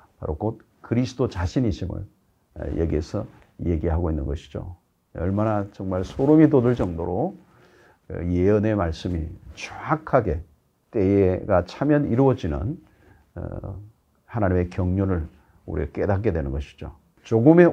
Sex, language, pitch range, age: male, Korean, 85-120 Hz, 50-69